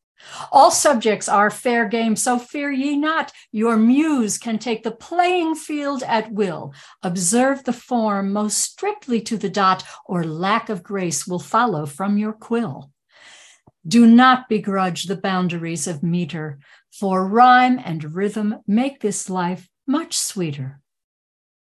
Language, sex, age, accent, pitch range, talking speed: English, female, 60-79, American, 175-235 Hz, 140 wpm